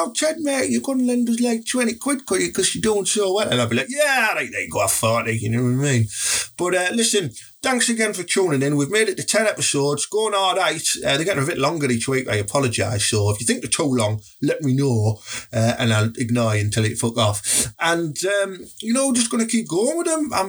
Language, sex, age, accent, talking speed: English, male, 30-49, British, 255 wpm